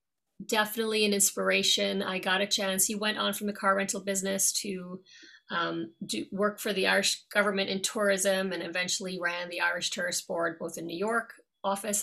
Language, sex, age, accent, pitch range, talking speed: English, female, 30-49, American, 185-220 Hz, 180 wpm